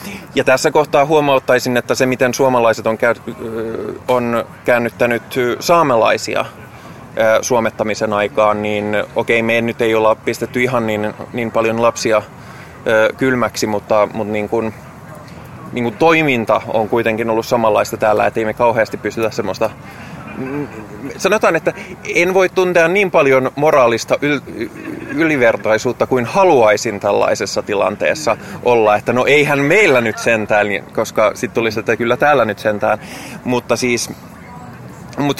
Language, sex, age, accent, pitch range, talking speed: Finnish, male, 20-39, native, 110-130 Hz, 120 wpm